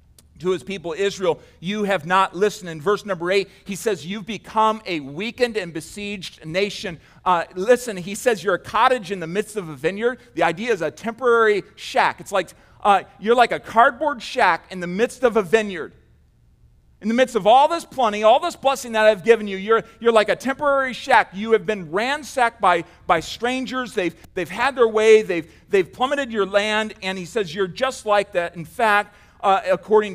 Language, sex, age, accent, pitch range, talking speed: English, male, 40-59, American, 175-220 Hz, 205 wpm